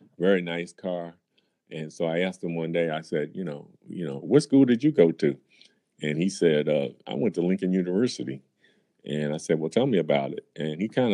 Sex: male